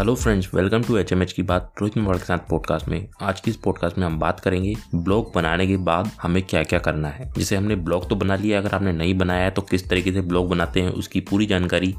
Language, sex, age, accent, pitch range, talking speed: Hindi, male, 20-39, native, 90-110 Hz, 270 wpm